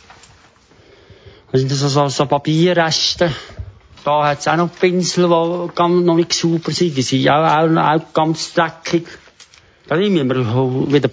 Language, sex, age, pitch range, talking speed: German, male, 60-79, 110-155 Hz, 190 wpm